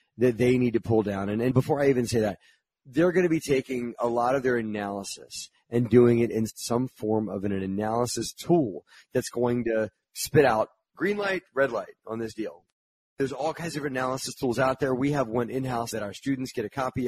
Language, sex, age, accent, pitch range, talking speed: English, male, 30-49, American, 110-130 Hz, 225 wpm